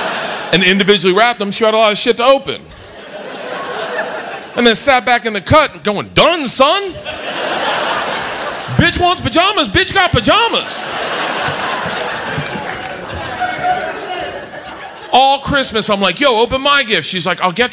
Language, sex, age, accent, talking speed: English, male, 40-59, American, 135 wpm